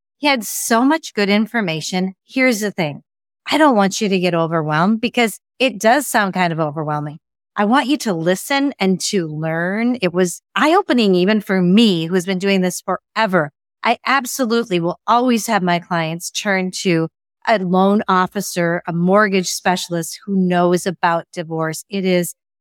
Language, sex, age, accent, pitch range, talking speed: English, female, 30-49, American, 175-225 Hz, 170 wpm